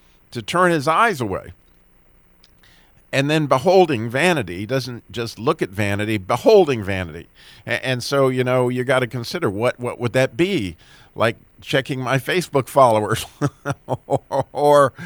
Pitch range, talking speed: 110-155 Hz, 150 wpm